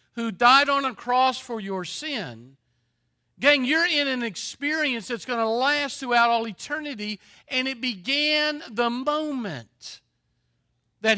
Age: 50-69